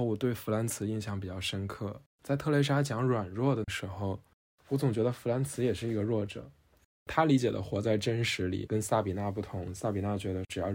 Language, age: Chinese, 10-29